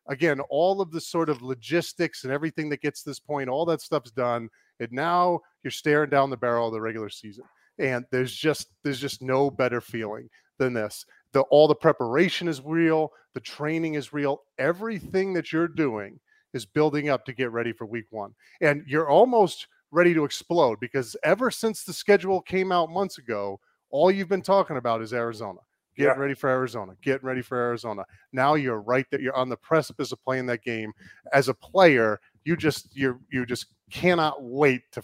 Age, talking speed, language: 30-49, 195 wpm, English